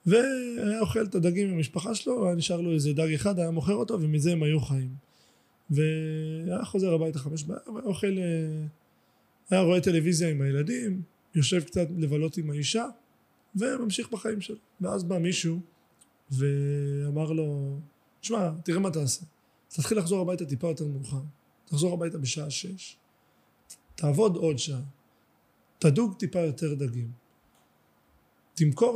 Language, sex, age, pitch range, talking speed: Hebrew, male, 20-39, 150-200 Hz, 140 wpm